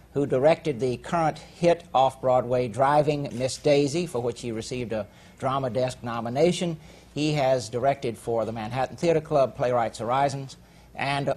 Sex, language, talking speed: male, English, 150 wpm